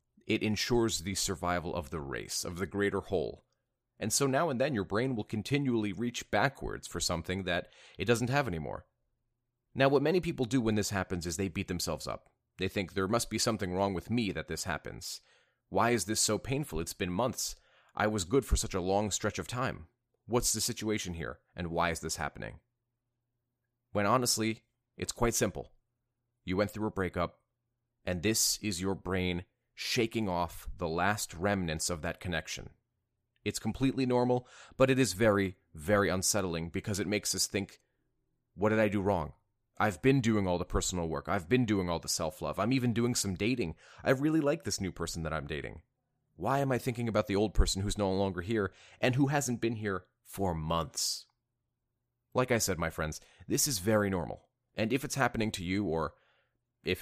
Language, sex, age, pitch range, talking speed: English, male, 30-49, 90-120 Hz, 195 wpm